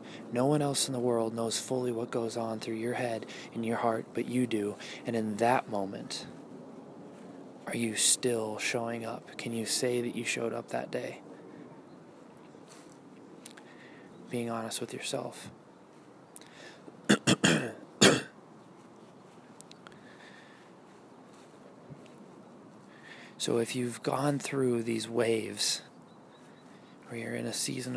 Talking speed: 115 wpm